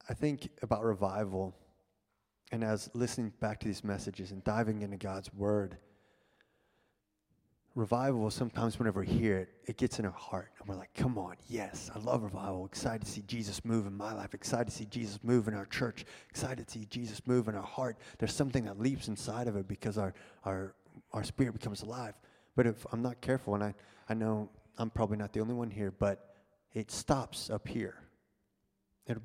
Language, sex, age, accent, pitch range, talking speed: English, male, 20-39, American, 105-125 Hz, 195 wpm